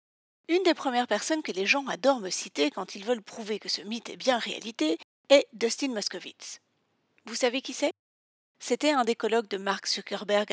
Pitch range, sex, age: 200-260 Hz, female, 40-59